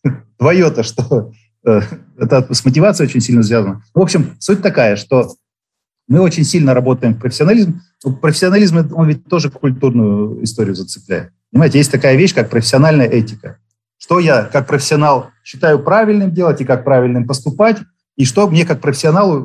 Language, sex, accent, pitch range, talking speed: Russian, male, native, 115-155 Hz, 150 wpm